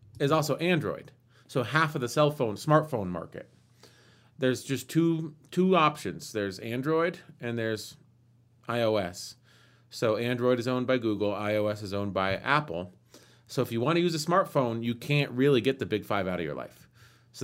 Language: English